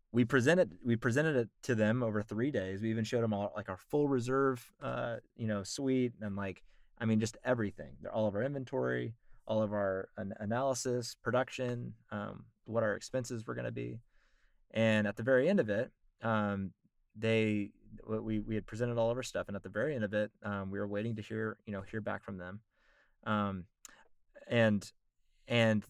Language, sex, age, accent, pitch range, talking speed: English, male, 20-39, American, 105-120 Hz, 195 wpm